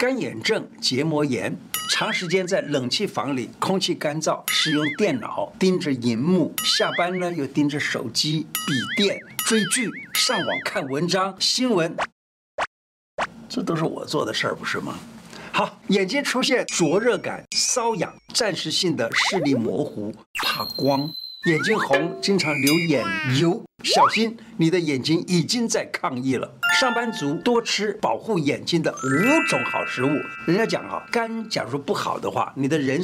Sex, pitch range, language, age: male, 150-215 Hz, Chinese, 60-79